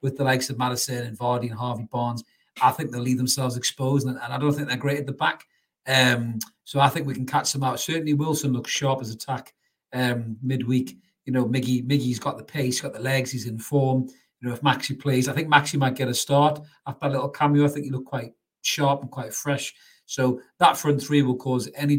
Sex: male